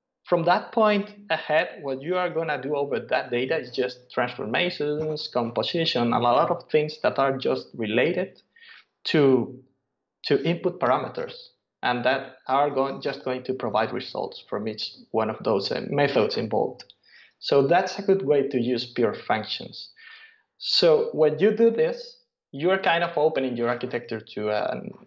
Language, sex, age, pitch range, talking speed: English, male, 30-49, 130-180 Hz, 165 wpm